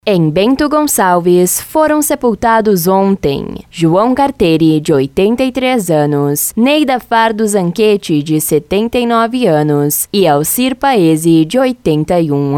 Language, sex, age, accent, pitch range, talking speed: Portuguese, female, 10-29, Brazilian, 155-225 Hz, 105 wpm